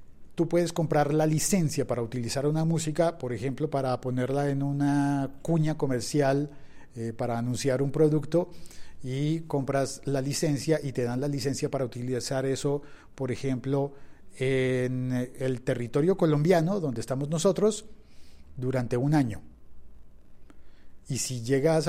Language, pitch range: Spanish, 125-150 Hz